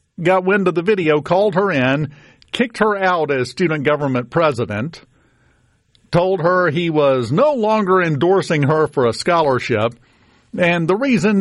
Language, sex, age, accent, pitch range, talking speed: English, male, 50-69, American, 120-170 Hz, 155 wpm